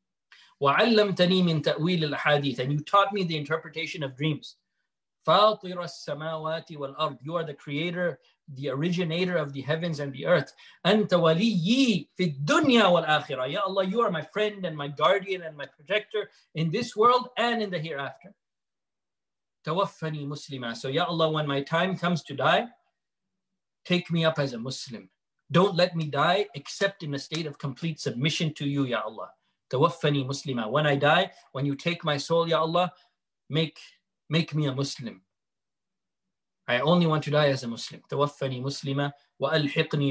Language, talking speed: English, 150 wpm